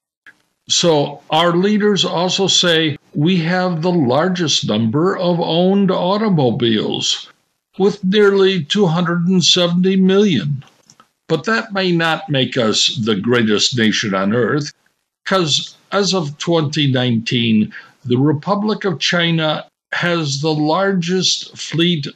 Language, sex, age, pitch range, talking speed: English, male, 60-79, 140-185 Hz, 110 wpm